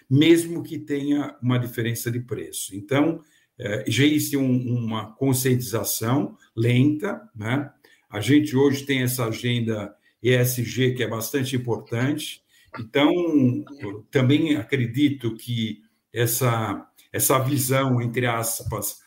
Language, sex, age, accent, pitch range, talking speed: Portuguese, male, 60-79, Brazilian, 120-145 Hz, 105 wpm